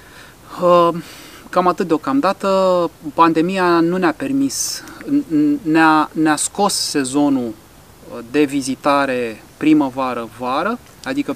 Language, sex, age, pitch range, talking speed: Romanian, male, 30-49, 130-185 Hz, 75 wpm